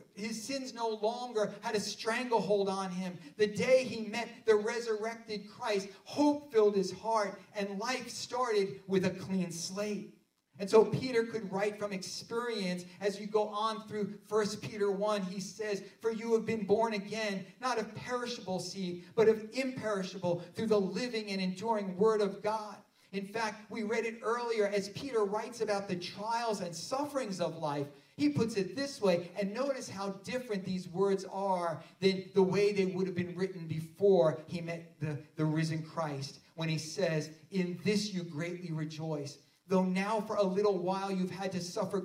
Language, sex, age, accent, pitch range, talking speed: English, male, 40-59, American, 180-220 Hz, 180 wpm